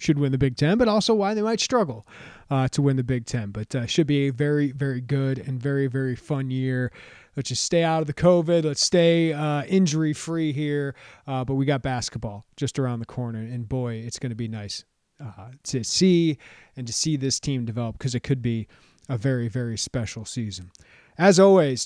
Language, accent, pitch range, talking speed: English, American, 125-160 Hz, 215 wpm